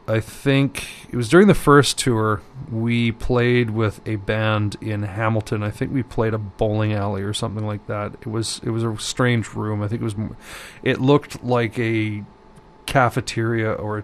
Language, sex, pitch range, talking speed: English, male, 110-125 Hz, 190 wpm